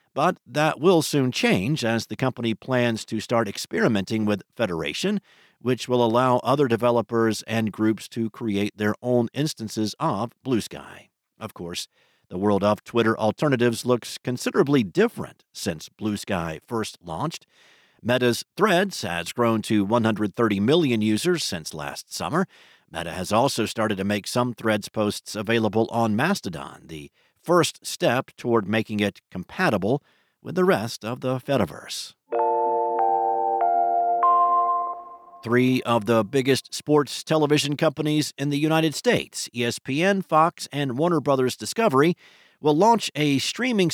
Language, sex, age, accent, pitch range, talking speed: English, male, 50-69, American, 110-145 Hz, 135 wpm